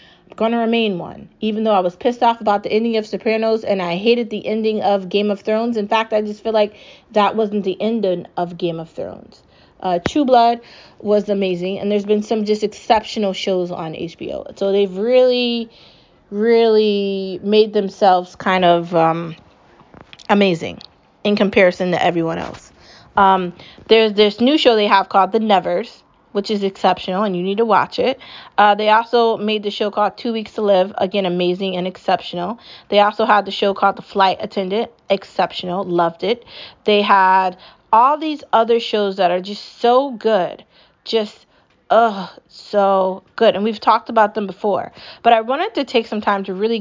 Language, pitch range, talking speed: English, 190-230 Hz, 185 wpm